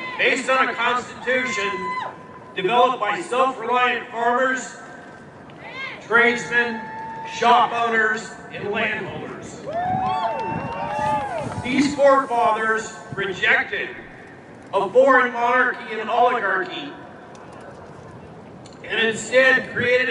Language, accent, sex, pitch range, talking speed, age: English, American, male, 220-255 Hz, 75 wpm, 40-59